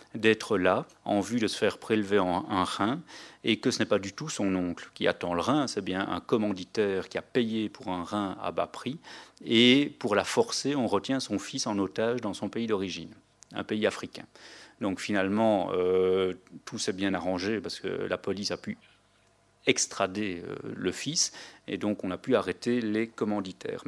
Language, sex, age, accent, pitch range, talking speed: French, male, 40-59, French, 100-145 Hz, 195 wpm